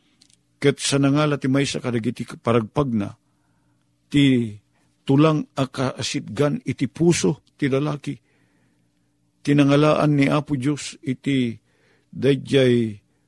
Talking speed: 95 wpm